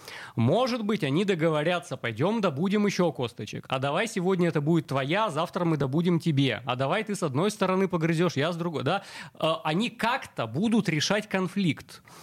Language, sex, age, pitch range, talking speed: Russian, male, 30-49, 140-190 Hz, 165 wpm